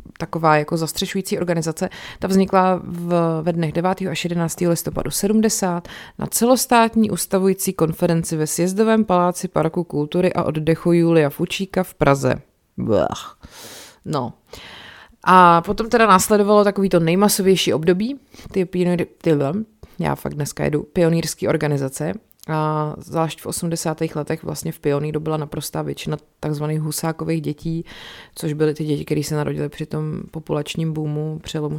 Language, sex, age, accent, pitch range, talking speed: Czech, female, 30-49, native, 155-175 Hz, 140 wpm